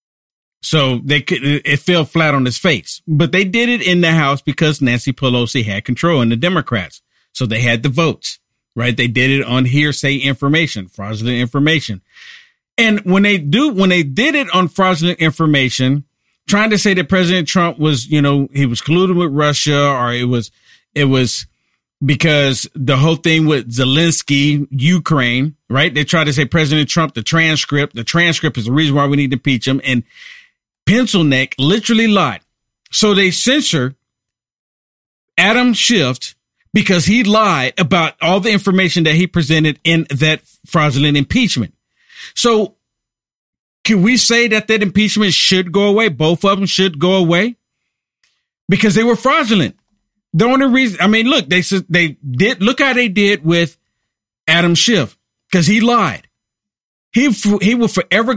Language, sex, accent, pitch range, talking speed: English, male, American, 140-200 Hz, 170 wpm